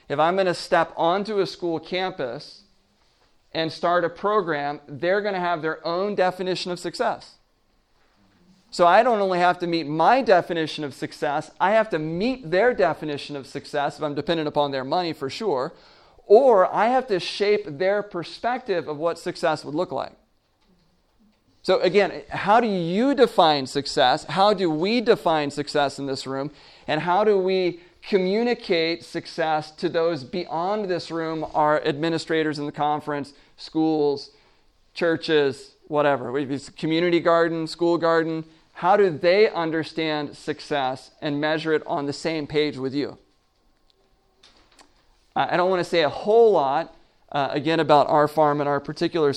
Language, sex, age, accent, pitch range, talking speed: English, male, 40-59, American, 150-180 Hz, 160 wpm